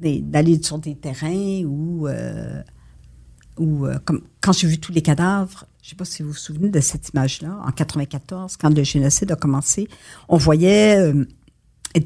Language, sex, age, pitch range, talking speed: French, female, 60-79, 145-175 Hz, 175 wpm